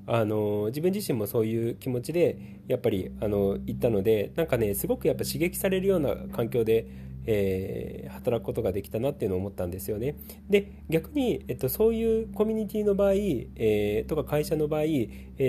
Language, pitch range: Japanese, 105-170 Hz